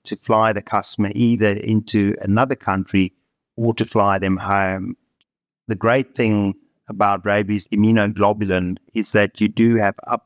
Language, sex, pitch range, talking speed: English, male, 100-115 Hz, 145 wpm